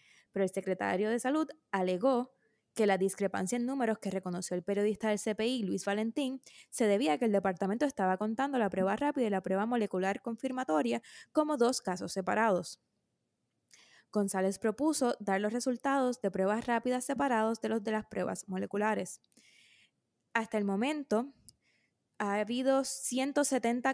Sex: female